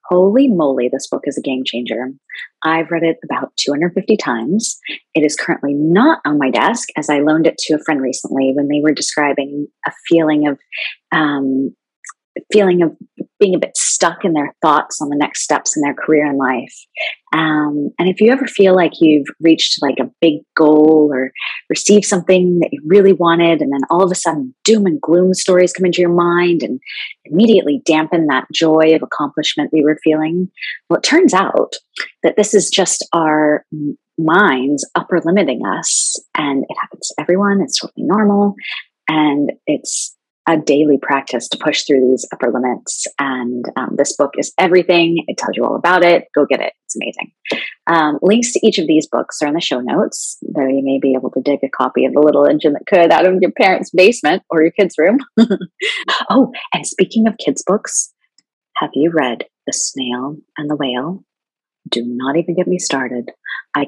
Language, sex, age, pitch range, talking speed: English, female, 30-49, 145-185 Hz, 195 wpm